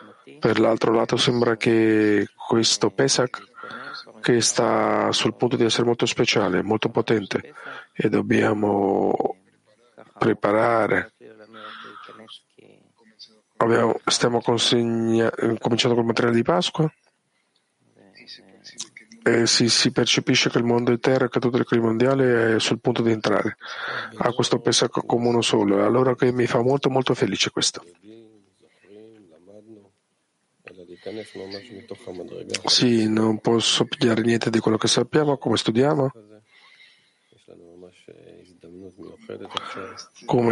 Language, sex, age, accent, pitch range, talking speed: Italian, male, 40-59, native, 110-125 Hz, 110 wpm